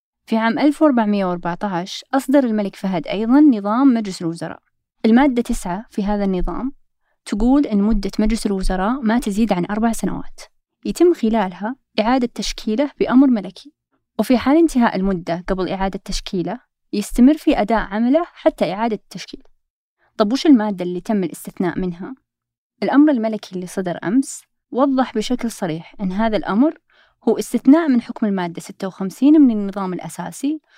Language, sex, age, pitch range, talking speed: Arabic, female, 20-39, 195-260 Hz, 140 wpm